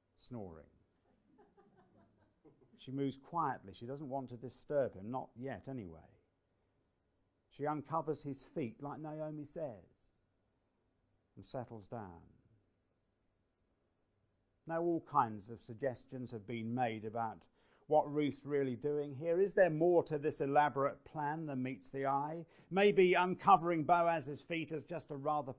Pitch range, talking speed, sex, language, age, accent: 110-160 Hz, 130 wpm, male, English, 50-69, British